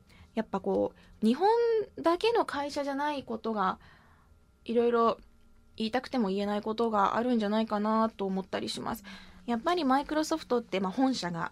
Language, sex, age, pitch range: Japanese, female, 20-39, 190-255 Hz